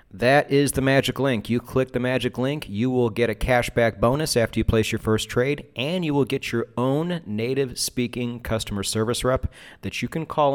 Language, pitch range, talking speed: English, 100-130 Hz, 210 wpm